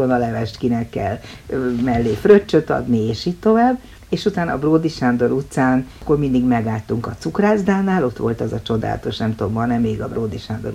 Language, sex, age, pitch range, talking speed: Hungarian, female, 60-79, 110-150 Hz, 190 wpm